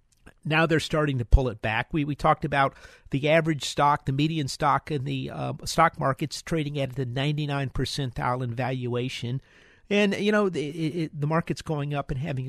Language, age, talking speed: English, 50-69, 190 wpm